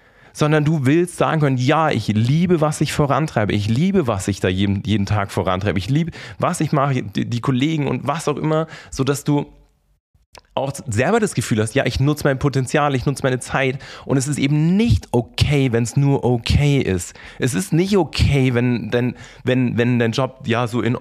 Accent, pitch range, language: German, 120-150 Hz, German